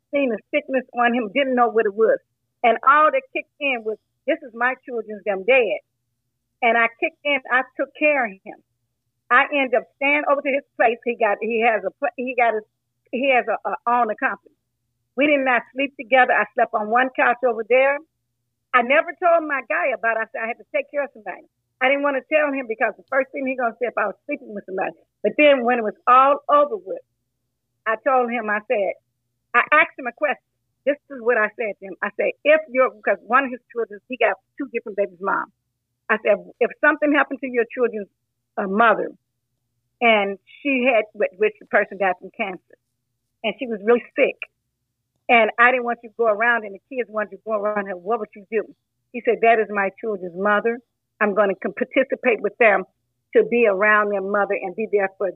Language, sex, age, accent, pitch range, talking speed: English, female, 40-59, American, 200-270 Hz, 225 wpm